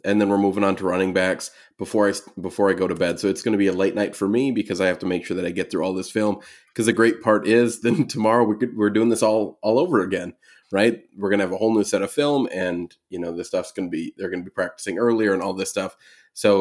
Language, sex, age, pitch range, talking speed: English, male, 20-39, 95-110 Hz, 305 wpm